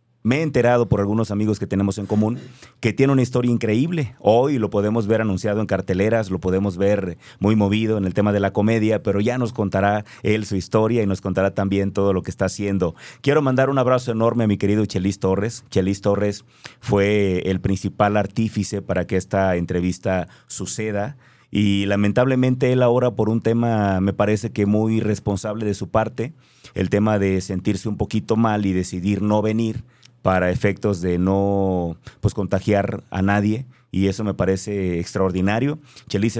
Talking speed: 180 wpm